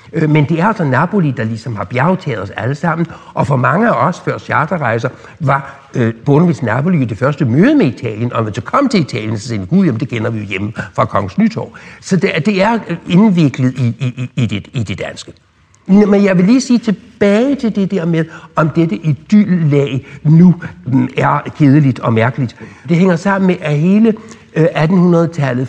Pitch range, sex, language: 125-175 Hz, male, Danish